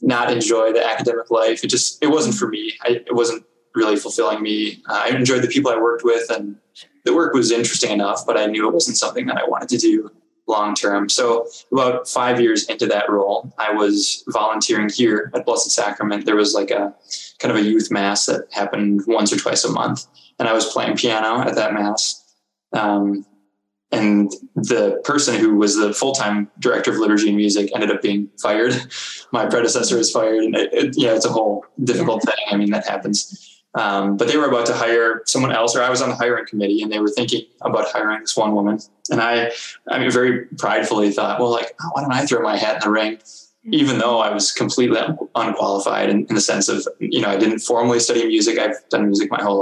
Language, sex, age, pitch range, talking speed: English, male, 20-39, 105-120 Hz, 220 wpm